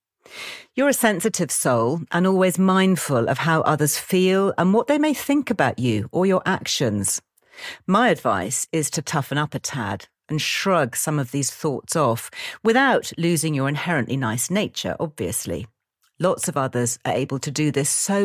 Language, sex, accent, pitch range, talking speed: English, female, British, 145-200 Hz, 170 wpm